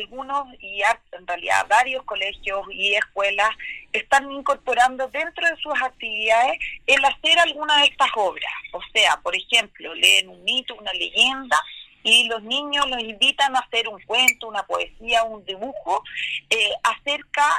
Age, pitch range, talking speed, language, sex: 30-49, 205-270 Hz, 150 wpm, Spanish, female